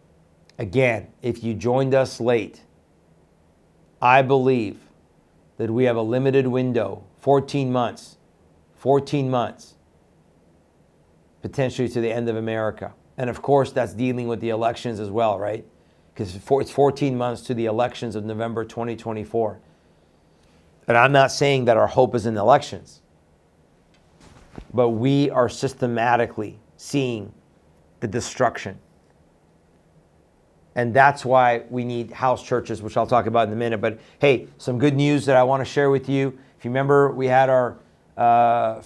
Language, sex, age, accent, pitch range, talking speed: English, male, 50-69, American, 115-135 Hz, 145 wpm